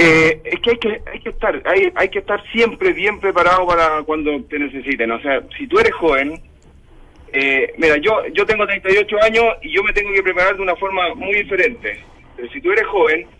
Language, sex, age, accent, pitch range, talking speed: Spanish, male, 40-59, Argentinian, 150-220 Hz, 215 wpm